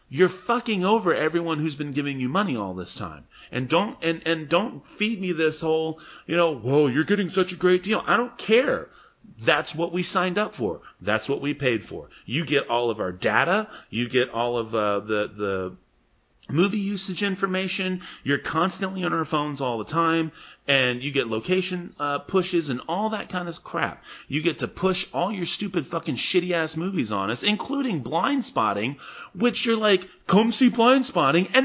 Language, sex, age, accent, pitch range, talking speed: English, male, 30-49, American, 135-210 Hz, 195 wpm